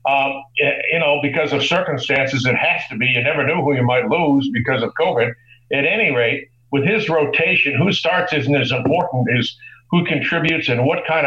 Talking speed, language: 195 wpm, English